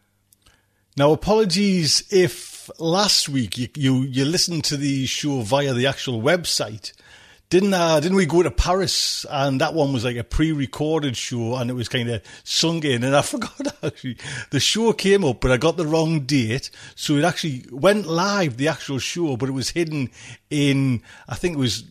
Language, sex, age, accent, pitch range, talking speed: English, male, 40-59, British, 120-155 Hz, 190 wpm